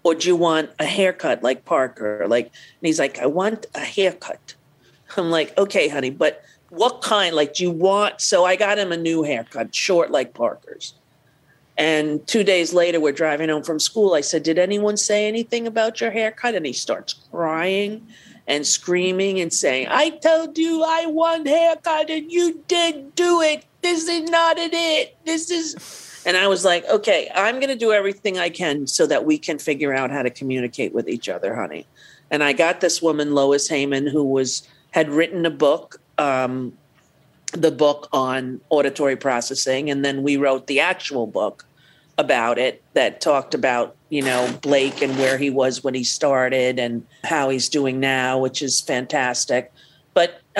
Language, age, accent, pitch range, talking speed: English, 50-69, American, 140-205 Hz, 185 wpm